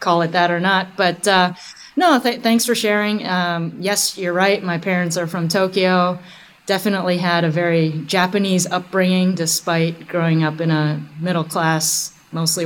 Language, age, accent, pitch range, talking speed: English, 30-49, American, 160-185 Hz, 160 wpm